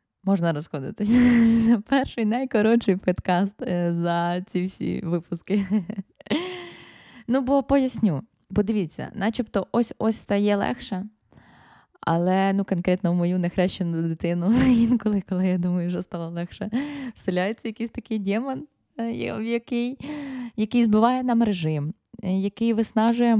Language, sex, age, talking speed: Ukrainian, female, 20-39, 110 wpm